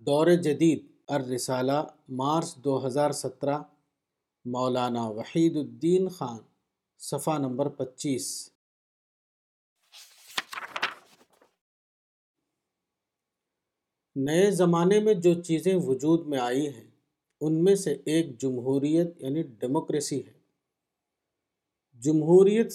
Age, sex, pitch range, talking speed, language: 50-69, male, 135-170 Hz, 85 wpm, Urdu